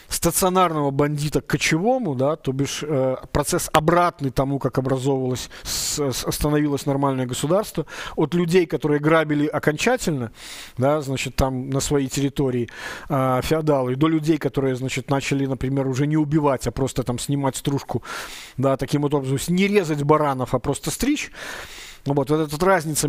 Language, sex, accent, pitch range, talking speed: Russian, male, native, 140-165 Hz, 150 wpm